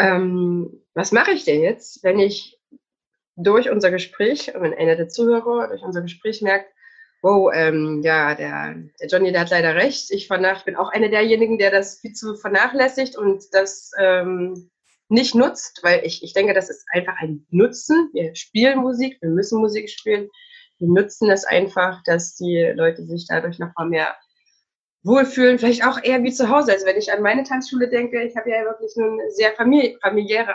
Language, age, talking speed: German, 20-39, 185 wpm